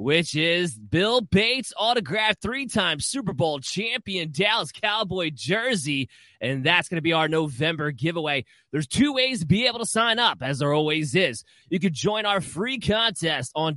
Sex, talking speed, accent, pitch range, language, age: male, 180 wpm, American, 135-180 Hz, English, 20-39